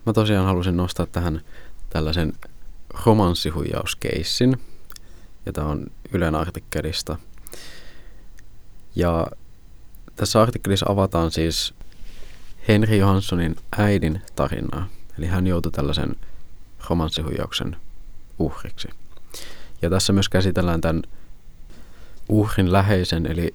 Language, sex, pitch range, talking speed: Finnish, male, 80-100 Hz, 90 wpm